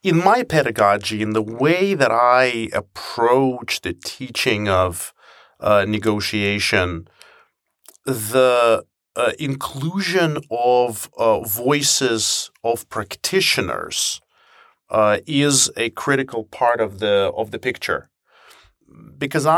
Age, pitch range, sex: 40-59, 105-135 Hz, male